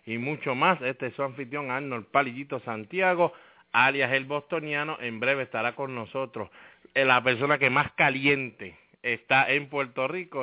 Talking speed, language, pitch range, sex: 155 wpm, English, 115-140 Hz, male